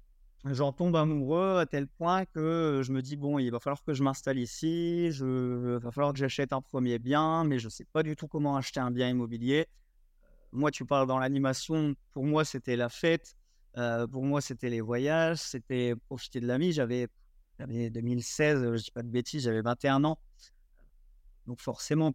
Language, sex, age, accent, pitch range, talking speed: French, male, 30-49, French, 130-160 Hz, 195 wpm